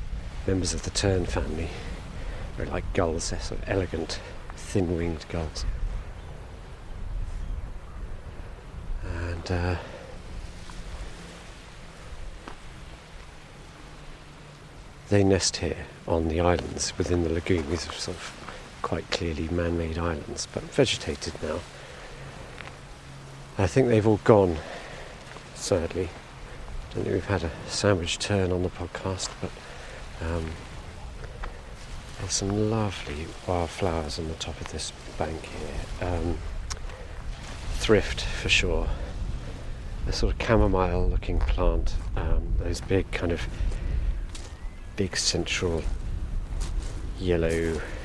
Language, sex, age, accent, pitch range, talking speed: English, male, 50-69, British, 80-95 Hz, 105 wpm